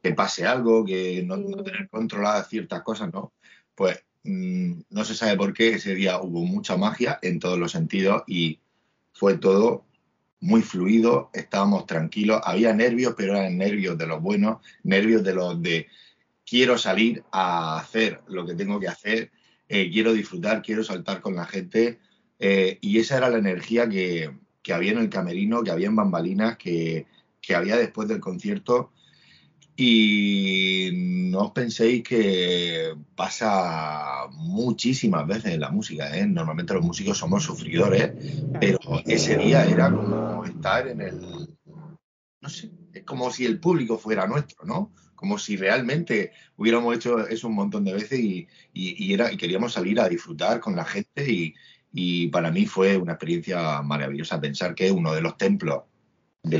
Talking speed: 165 wpm